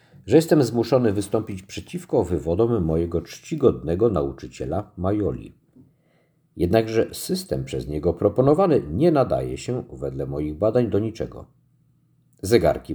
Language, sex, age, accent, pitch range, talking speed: Polish, male, 50-69, native, 75-110 Hz, 110 wpm